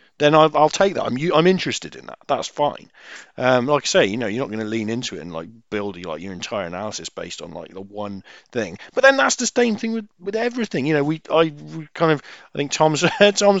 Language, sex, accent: English, male, British